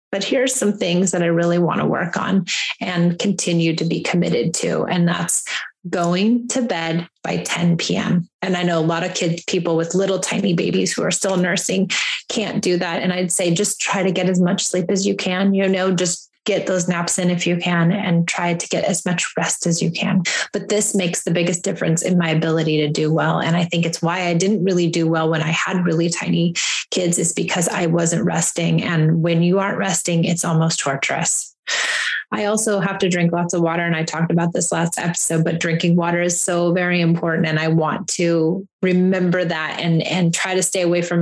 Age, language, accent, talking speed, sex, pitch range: 30-49, English, American, 225 wpm, female, 170-195 Hz